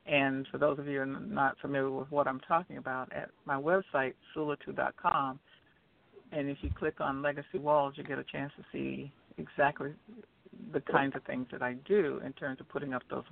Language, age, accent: English, 60-79, American